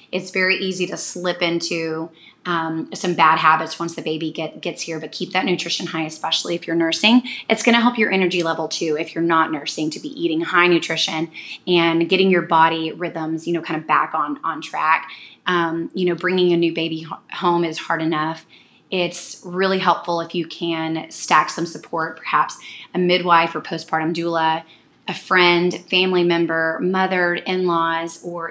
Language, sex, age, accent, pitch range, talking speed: English, female, 20-39, American, 165-190 Hz, 185 wpm